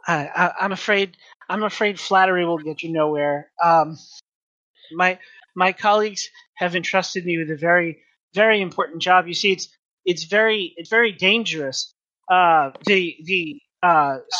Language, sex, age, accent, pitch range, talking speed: English, male, 30-49, American, 155-190 Hz, 155 wpm